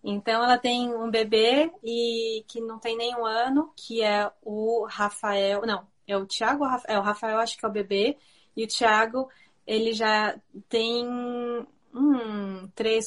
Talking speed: 155 wpm